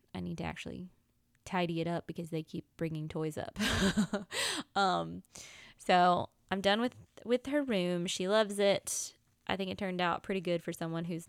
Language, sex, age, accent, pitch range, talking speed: English, female, 20-39, American, 160-200 Hz, 180 wpm